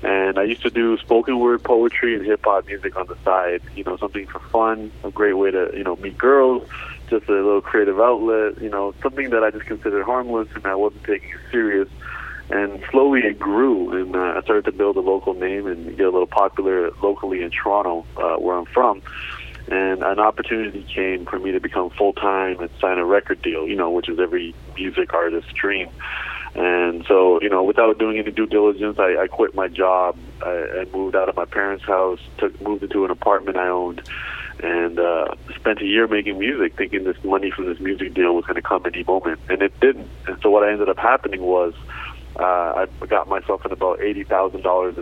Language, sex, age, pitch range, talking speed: English, male, 30-49, 90-115 Hz, 210 wpm